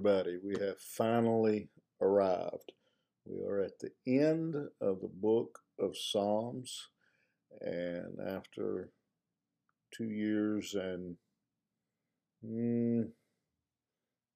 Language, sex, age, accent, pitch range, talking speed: English, male, 50-69, American, 100-120 Hz, 85 wpm